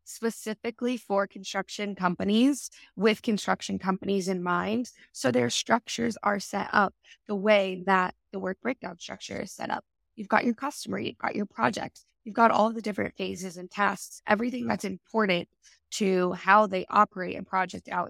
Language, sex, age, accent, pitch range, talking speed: English, female, 20-39, American, 180-215 Hz, 170 wpm